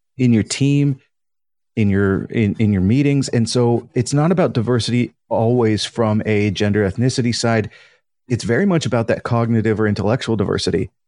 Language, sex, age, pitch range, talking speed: English, male, 30-49, 110-130 Hz, 160 wpm